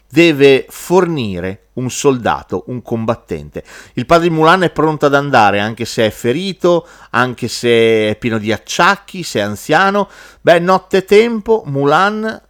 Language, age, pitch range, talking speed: Italian, 40-59, 120-185 Hz, 150 wpm